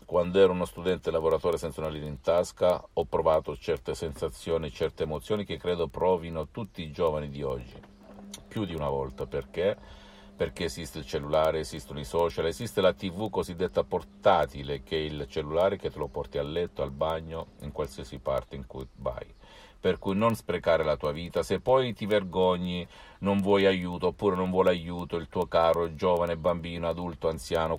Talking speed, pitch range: 180 wpm, 80-110 Hz